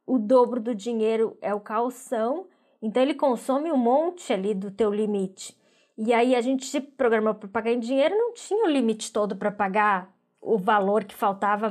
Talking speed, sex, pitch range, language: 190 wpm, female, 210-250 Hz, Portuguese